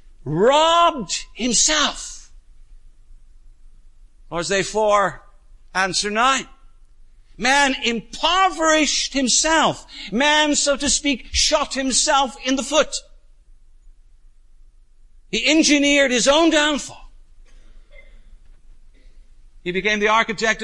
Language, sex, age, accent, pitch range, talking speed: English, male, 60-79, American, 210-280 Hz, 85 wpm